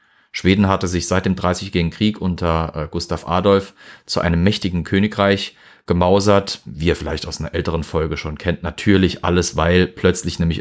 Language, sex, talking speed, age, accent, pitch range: German, male, 165 wpm, 30-49, German, 85-105 Hz